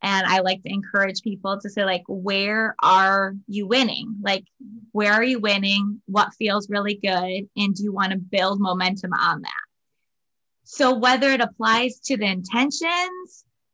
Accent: American